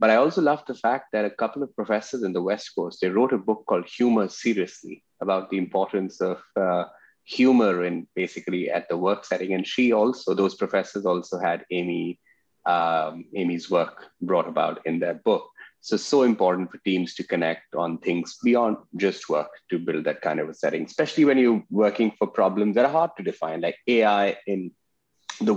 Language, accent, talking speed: English, Indian, 195 wpm